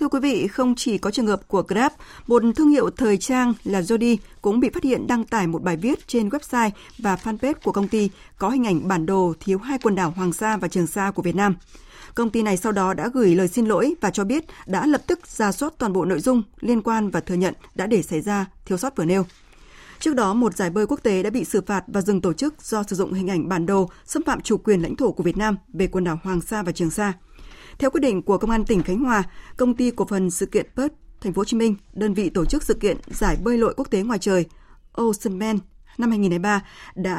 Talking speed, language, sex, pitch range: 265 wpm, Vietnamese, female, 190-240 Hz